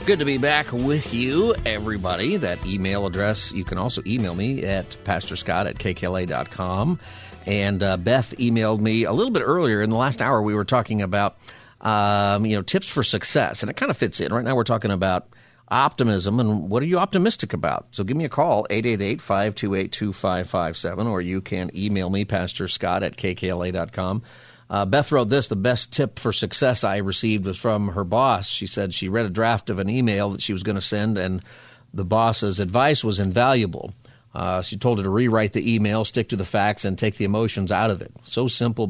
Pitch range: 100-120 Hz